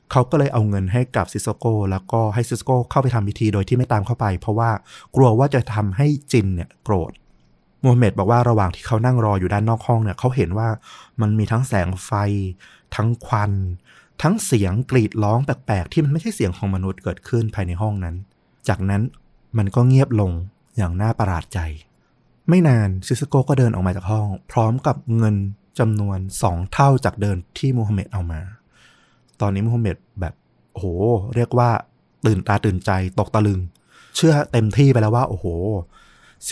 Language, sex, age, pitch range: Thai, male, 20-39, 100-120 Hz